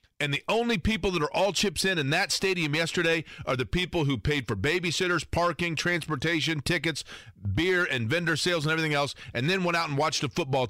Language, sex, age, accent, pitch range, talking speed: English, male, 40-59, American, 125-160 Hz, 215 wpm